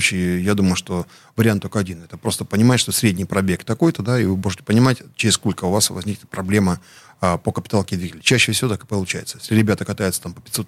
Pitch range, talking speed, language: 95-110 Hz, 215 wpm, Russian